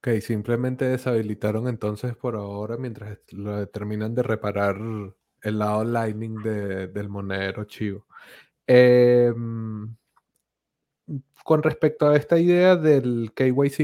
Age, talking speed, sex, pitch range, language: 20-39, 115 wpm, male, 115-130 Hz, Spanish